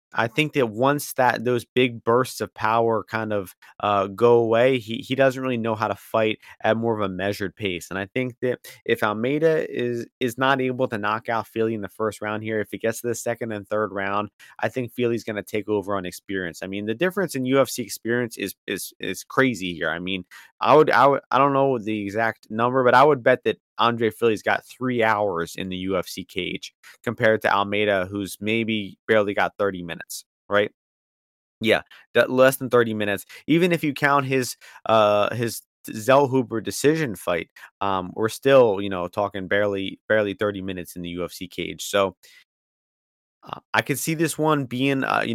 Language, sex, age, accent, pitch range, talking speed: English, male, 30-49, American, 100-125 Hz, 205 wpm